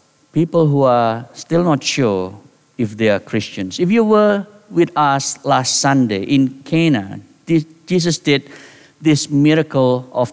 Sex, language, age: male, English, 50-69